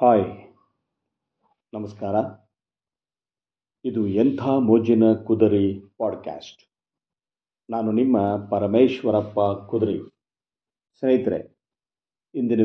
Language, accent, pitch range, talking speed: Kannada, native, 110-140 Hz, 60 wpm